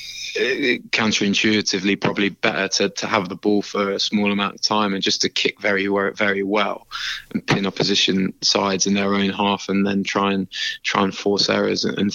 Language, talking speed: English, 190 wpm